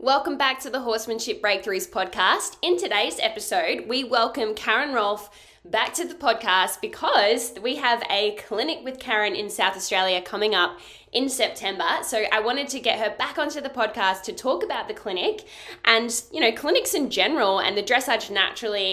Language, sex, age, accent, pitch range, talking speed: English, female, 10-29, Australian, 190-255 Hz, 180 wpm